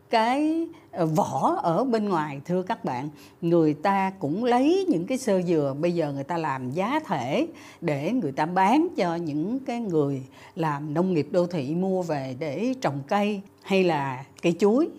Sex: female